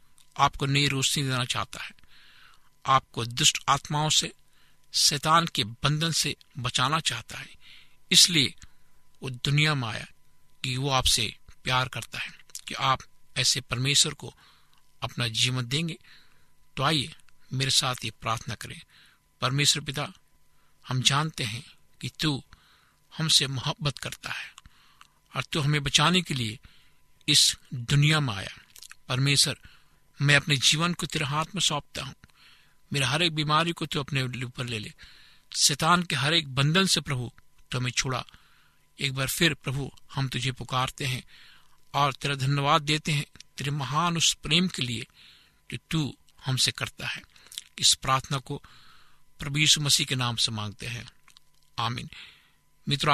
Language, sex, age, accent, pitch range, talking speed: Hindi, male, 60-79, native, 125-150 Hz, 150 wpm